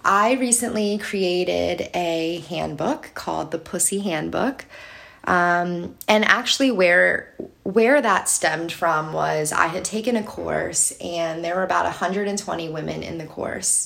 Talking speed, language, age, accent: 140 wpm, English, 20-39, American